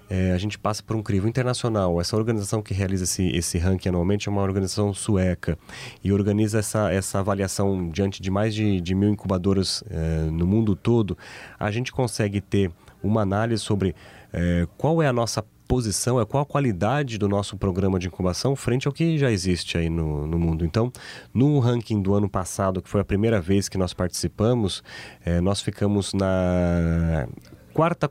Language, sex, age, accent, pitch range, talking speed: Portuguese, male, 30-49, Brazilian, 95-120 Hz, 175 wpm